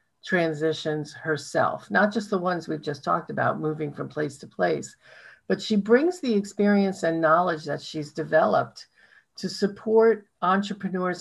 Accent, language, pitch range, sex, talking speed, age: American, English, 160-205 Hz, female, 150 wpm, 50-69